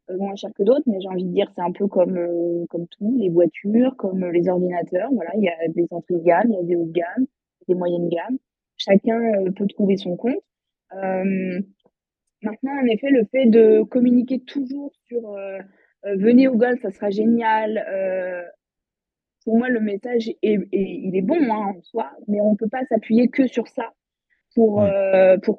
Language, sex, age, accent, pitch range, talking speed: French, female, 20-39, French, 190-245 Hz, 200 wpm